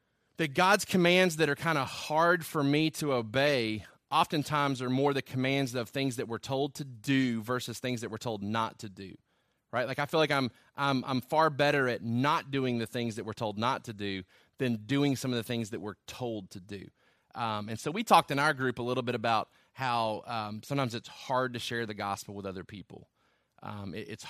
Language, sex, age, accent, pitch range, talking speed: English, male, 30-49, American, 120-150 Hz, 225 wpm